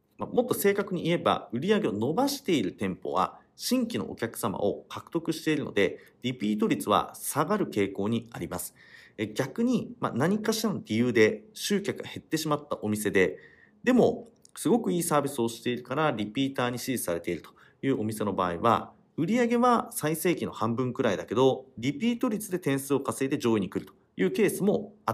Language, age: Japanese, 40-59